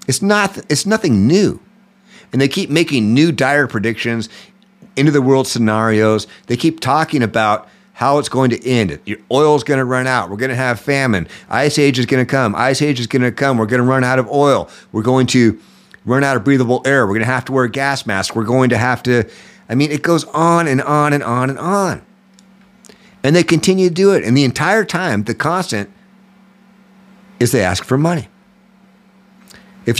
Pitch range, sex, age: 125-200 Hz, male, 50-69